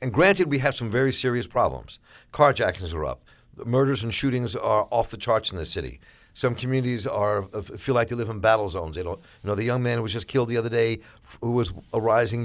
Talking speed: 235 wpm